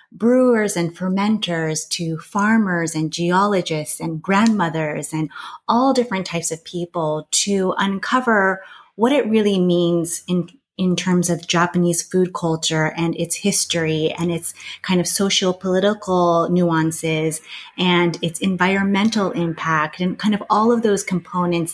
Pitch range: 165-195 Hz